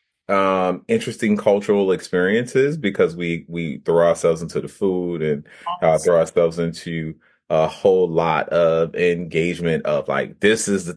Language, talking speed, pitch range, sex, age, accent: English, 150 wpm, 85-100 Hz, male, 30-49, American